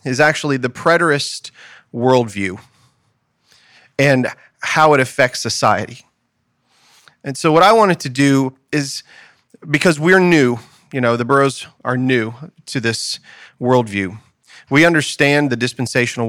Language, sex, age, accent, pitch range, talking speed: English, male, 30-49, American, 115-150 Hz, 125 wpm